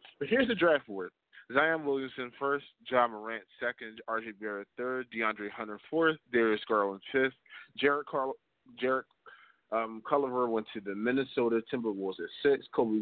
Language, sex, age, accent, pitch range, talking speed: English, male, 20-39, American, 105-140 Hz, 150 wpm